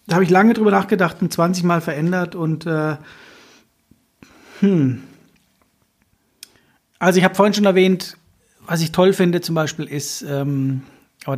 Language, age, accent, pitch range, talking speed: German, 40-59, German, 145-180 Hz, 150 wpm